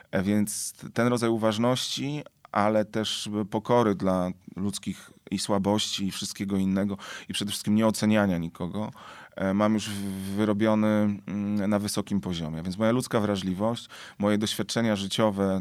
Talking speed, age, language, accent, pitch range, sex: 125 wpm, 30-49, Polish, native, 95-110 Hz, male